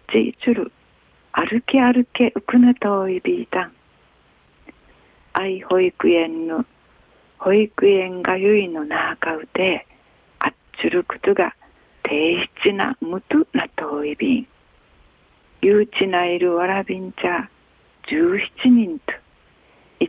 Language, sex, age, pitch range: Japanese, female, 50-69, 180-270 Hz